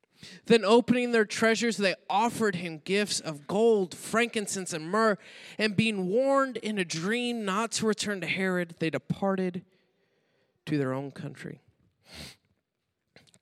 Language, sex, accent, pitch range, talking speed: English, male, American, 155-205 Hz, 140 wpm